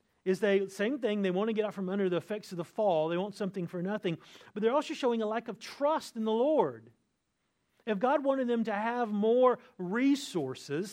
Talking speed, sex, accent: 220 wpm, male, American